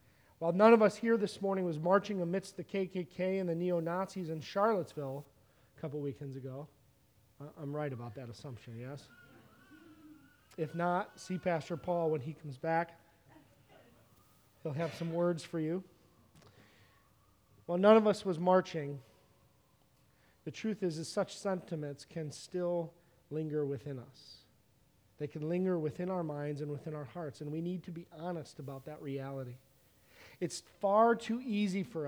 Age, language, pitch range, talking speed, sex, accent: 40-59, English, 140-185 Hz, 155 wpm, male, American